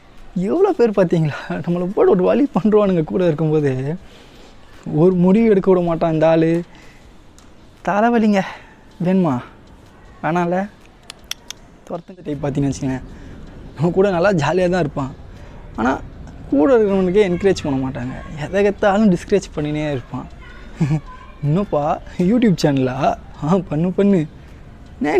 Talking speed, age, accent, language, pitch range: 110 wpm, 20-39, native, Tamil, 145-190 Hz